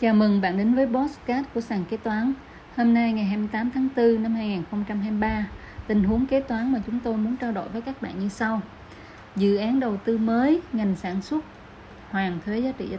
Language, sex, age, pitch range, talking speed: Vietnamese, female, 20-39, 190-230 Hz, 210 wpm